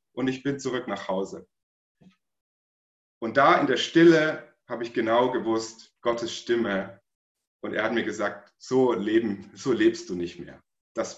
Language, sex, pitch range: German, male, 110-155 Hz